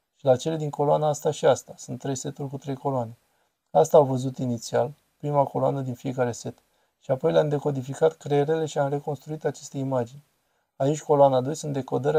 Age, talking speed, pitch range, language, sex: 20-39, 185 wpm, 135-155 Hz, Romanian, male